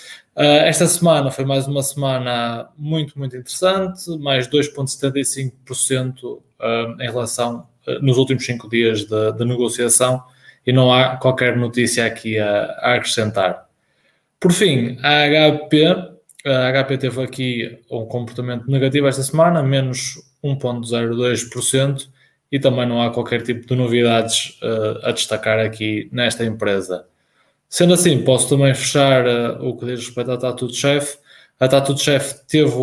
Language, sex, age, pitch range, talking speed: Portuguese, male, 20-39, 120-135 Hz, 135 wpm